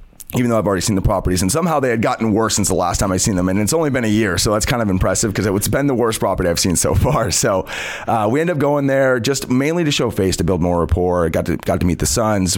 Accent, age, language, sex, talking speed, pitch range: American, 30-49, English, male, 305 wpm, 90-120 Hz